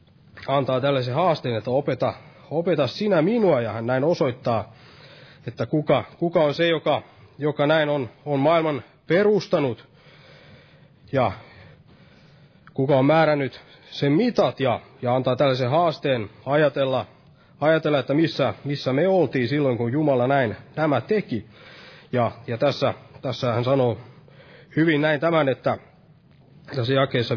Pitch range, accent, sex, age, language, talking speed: 130-160 Hz, native, male, 30-49, Finnish, 130 wpm